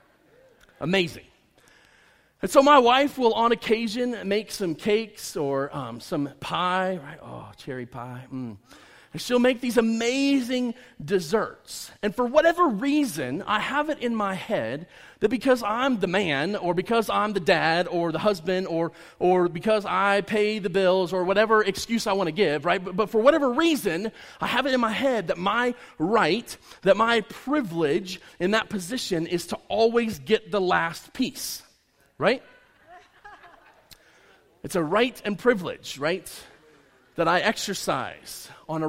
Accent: American